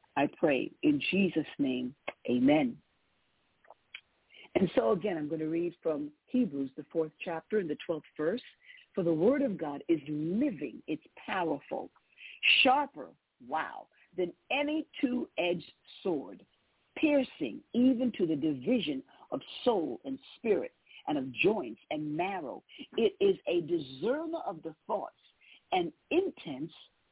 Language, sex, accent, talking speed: English, female, American, 135 wpm